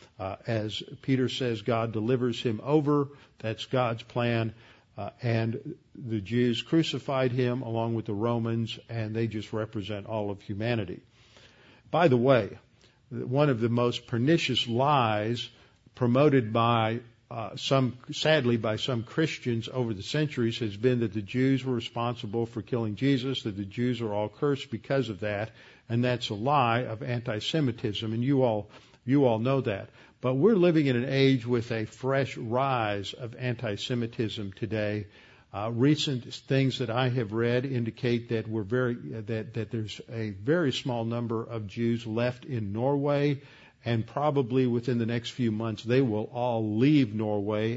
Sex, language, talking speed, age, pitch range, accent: male, English, 160 wpm, 50-69, 110-130 Hz, American